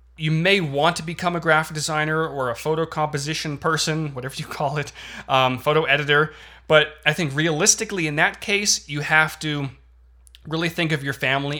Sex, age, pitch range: male, 30-49, 130-160 Hz